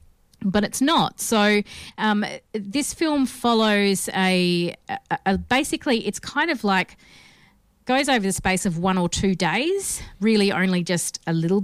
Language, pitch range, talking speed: English, 175-210 Hz, 155 wpm